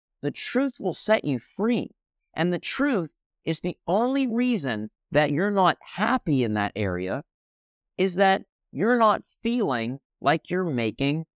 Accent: American